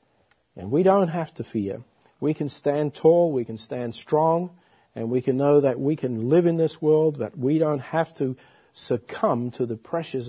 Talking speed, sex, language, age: 200 wpm, male, English, 50-69